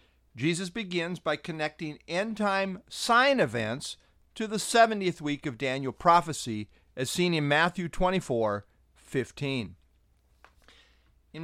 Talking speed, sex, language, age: 110 wpm, male, English, 50-69